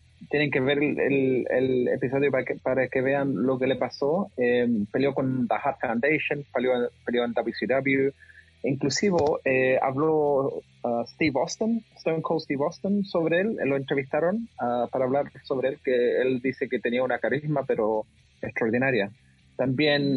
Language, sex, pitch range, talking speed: English, male, 130-165 Hz, 150 wpm